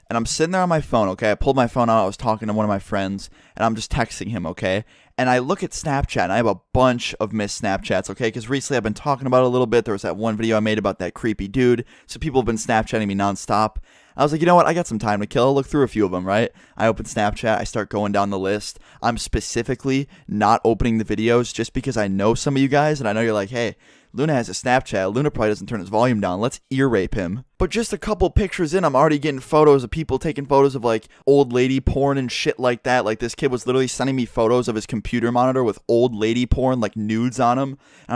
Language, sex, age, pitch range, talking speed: English, male, 20-39, 110-135 Hz, 280 wpm